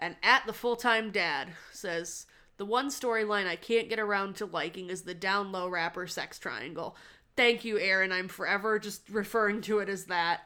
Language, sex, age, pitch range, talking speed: English, female, 20-39, 185-225 Hz, 185 wpm